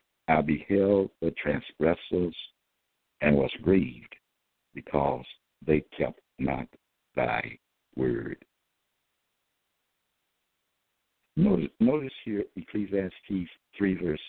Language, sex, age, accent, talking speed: English, male, 60-79, American, 80 wpm